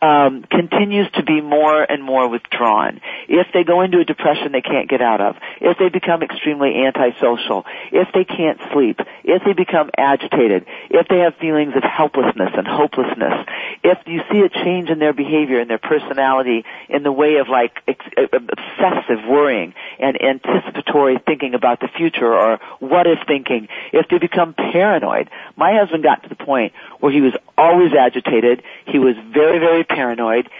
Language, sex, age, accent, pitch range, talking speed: English, male, 50-69, American, 135-170 Hz, 175 wpm